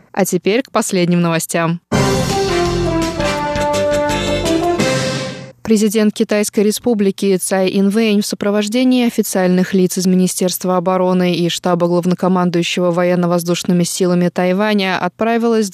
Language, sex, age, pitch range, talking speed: Russian, female, 20-39, 180-200 Hz, 90 wpm